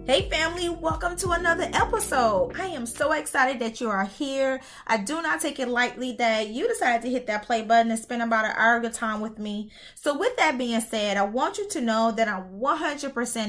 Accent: American